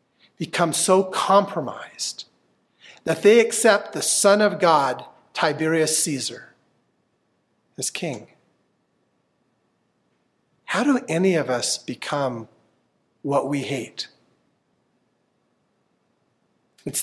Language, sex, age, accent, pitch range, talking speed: English, male, 40-59, American, 150-200 Hz, 85 wpm